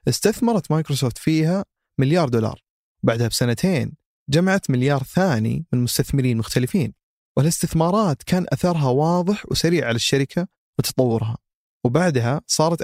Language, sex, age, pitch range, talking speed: Arabic, male, 30-49, 125-160 Hz, 110 wpm